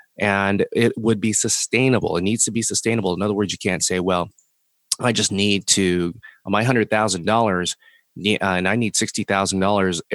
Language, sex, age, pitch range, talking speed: English, male, 30-49, 90-110 Hz, 165 wpm